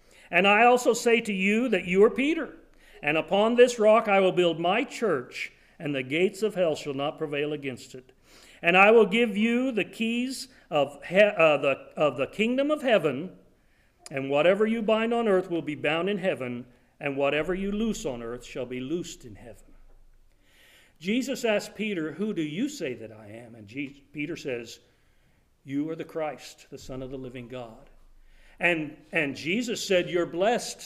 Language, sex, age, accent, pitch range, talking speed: English, male, 50-69, American, 145-215 Hz, 180 wpm